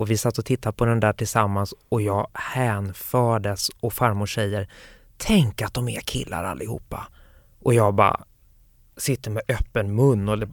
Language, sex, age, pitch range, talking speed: Swedish, male, 20-39, 105-125 Hz, 165 wpm